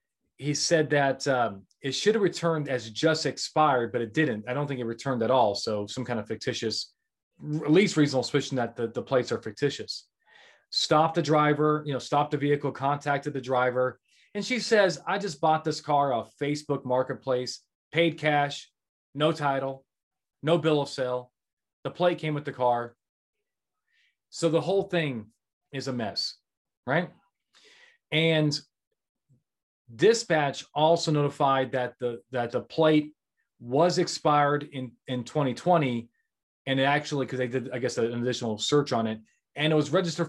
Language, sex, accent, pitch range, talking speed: English, male, American, 125-160 Hz, 165 wpm